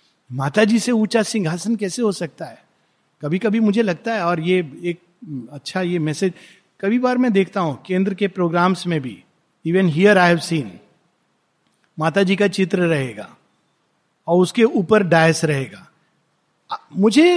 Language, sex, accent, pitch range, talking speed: Hindi, male, native, 170-225 Hz, 150 wpm